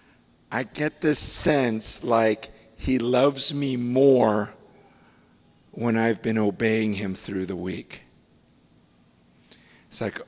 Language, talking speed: English, 110 wpm